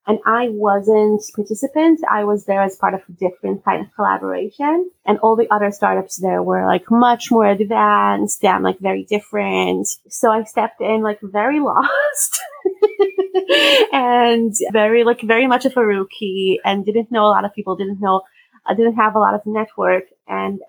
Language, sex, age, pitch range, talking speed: English, female, 30-49, 195-240 Hz, 175 wpm